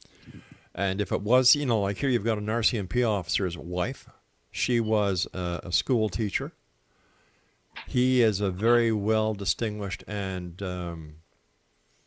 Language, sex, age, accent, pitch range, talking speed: English, male, 50-69, American, 90-120 Hz, 135 wpm